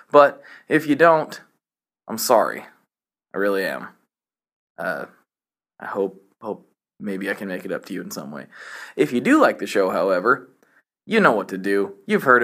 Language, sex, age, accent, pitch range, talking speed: English, male, 20-39, American, 105-145 Hz, 185 wpm